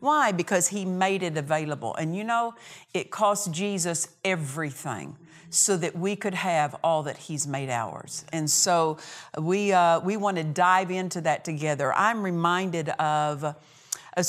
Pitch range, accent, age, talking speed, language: 165-195 Hz, American, 50-69, 160 wpm, English